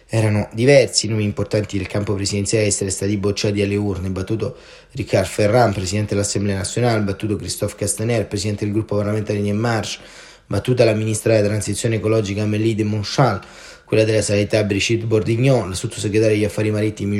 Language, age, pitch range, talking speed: Italian, 30-49, 100-120 Hz, 160 wpm